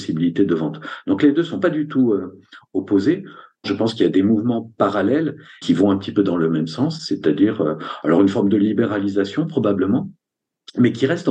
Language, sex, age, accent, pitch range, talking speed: French, male, 50-69, French, 90-115 Hz, 210 wpm